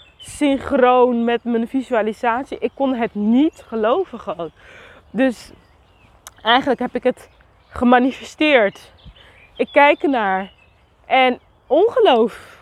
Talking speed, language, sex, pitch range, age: 100 wpm, Dutch, female, 205-275 Hz, 20-39